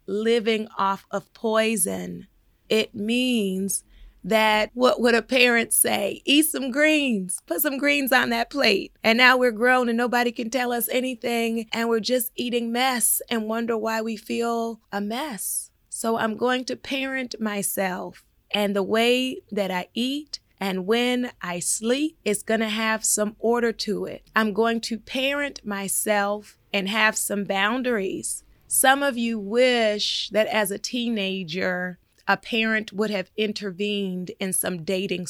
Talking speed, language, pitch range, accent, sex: 155 wpm, English, 195-235 Hz, American, female